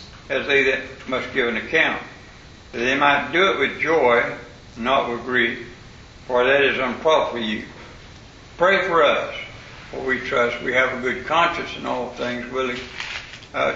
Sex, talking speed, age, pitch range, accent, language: male, 170 wpm, 60-79, 125-140 Hz, American, English